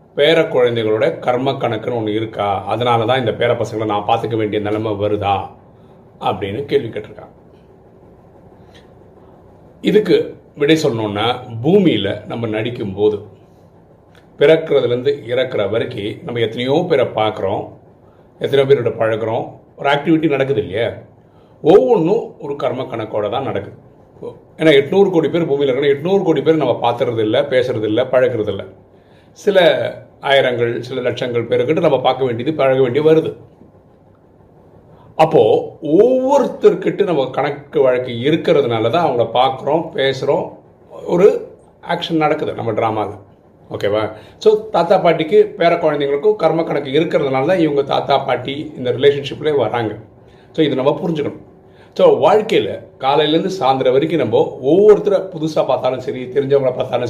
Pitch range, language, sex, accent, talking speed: 125-205 Hz, Tamil, male, native, 110 wpm